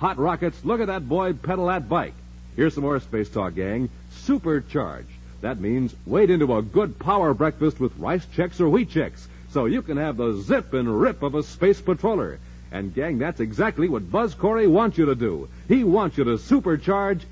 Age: 60-79